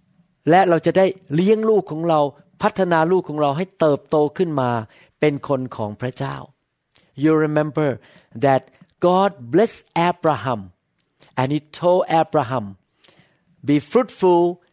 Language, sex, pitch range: Thai, male, 145-175 Hz